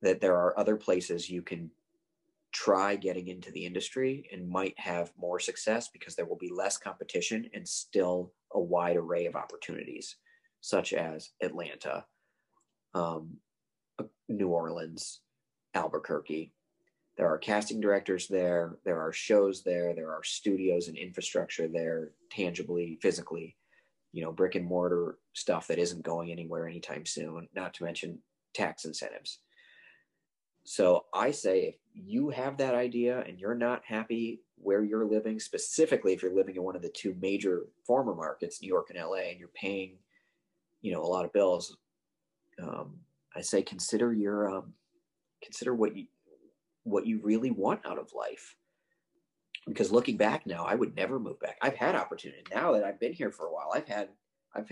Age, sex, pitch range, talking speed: 30-49, male, 90-130 Hz, 165 wpm